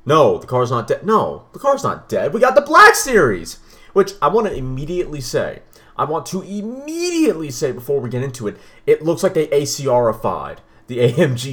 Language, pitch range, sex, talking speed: English, 120-195 Hz, male, 200 wpm